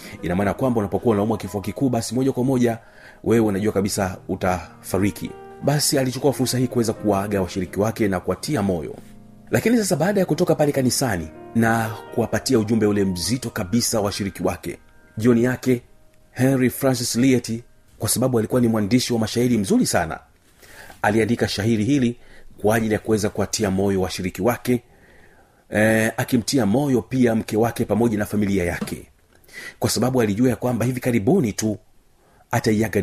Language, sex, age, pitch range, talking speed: Swahili, male, 40-59, 95-125 Hz, 155 wpm